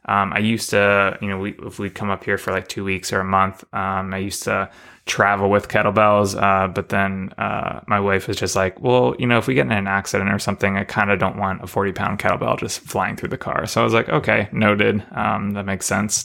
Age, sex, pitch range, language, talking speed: 20-39, male, 95-110 Hz, English, 255 wpm